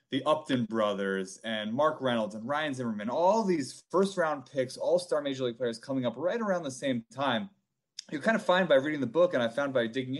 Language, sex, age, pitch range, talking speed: English, male, 30-49, 120-170 Hz, 225 wpm